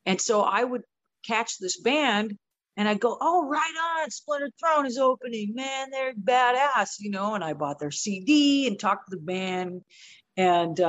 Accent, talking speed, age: American, 180 wpm, 50-69